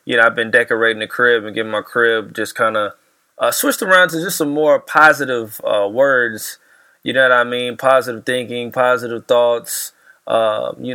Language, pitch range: English, 125-155 Hz